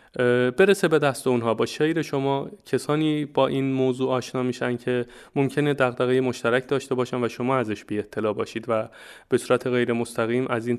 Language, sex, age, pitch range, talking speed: Persian, male, 20-39, 115-140 Hz, 180 wpm